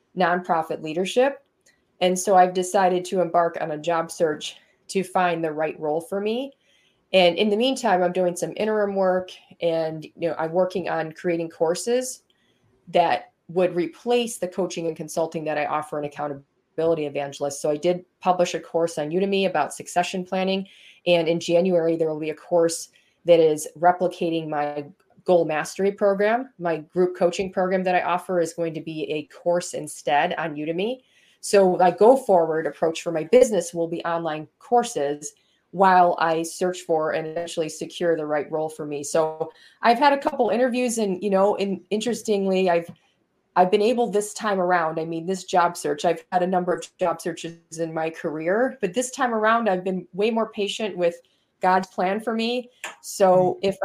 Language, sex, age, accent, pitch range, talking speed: English, female, 20-39, American, 165-195 Hz, 185 wpm